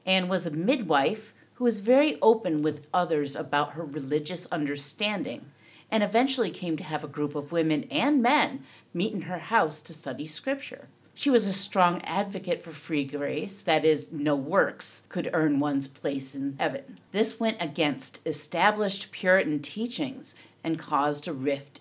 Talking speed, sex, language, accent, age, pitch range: 165 wpm, female, English, American, 50-69, 150-220 Hz